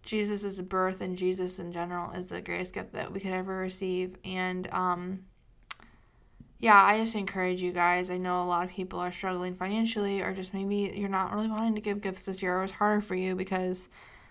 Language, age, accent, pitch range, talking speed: English, 20-39, American, 180-200 Hz, 210 wpm